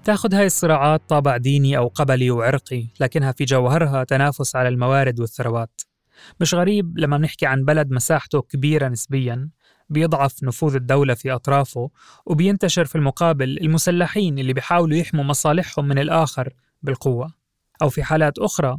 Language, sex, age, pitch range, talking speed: Arabic, male, 20-39, 130-155 Hz, 140 wpm